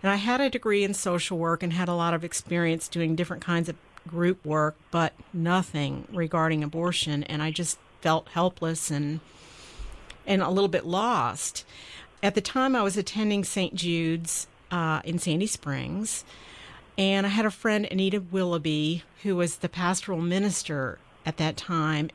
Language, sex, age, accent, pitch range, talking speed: English, female, 50-69, American, 160-200 Hz, 170 wpm